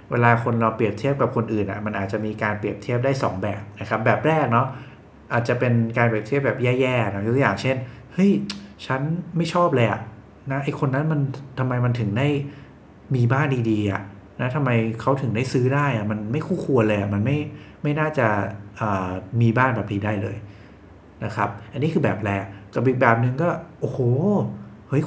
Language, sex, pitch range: English, male, 105-130 Hz